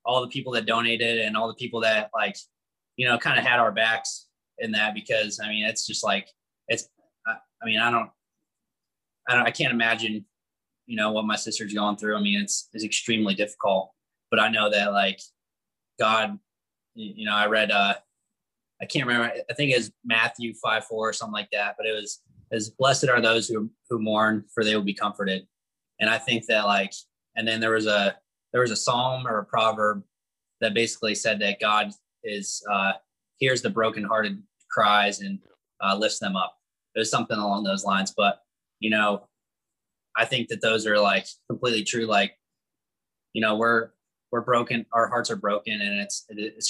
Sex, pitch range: male, 105-115 Hz